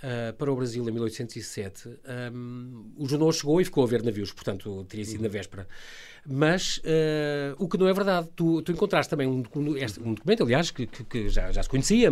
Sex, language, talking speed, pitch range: male, Portuguese, 190 wpm, 120-170 Hz